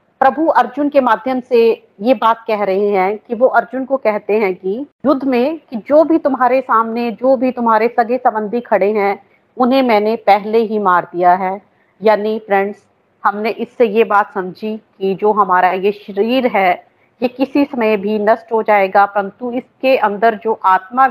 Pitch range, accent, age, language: 205-245 Hz, native, 40-59, Hindi